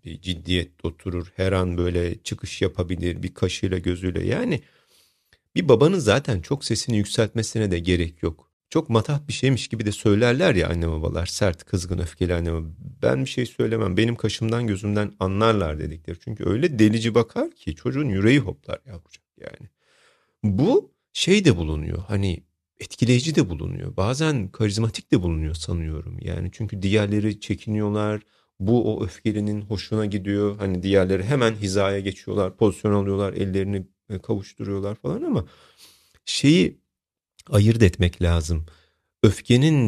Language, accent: Turkish, native